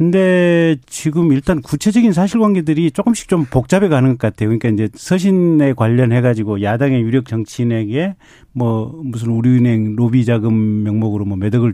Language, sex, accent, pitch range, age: Korean, male, native, 115-160 Hz, 40-59